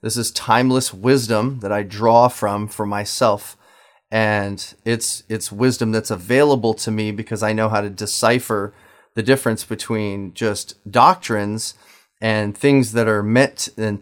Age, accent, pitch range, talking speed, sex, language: 30-49, American, 105-120 Hz, 150 wpm, male, English